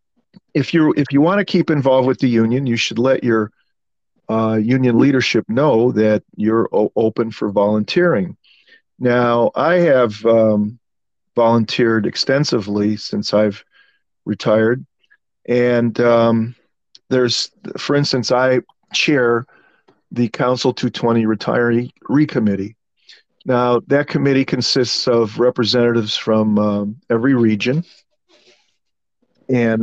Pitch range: 110-130 Hz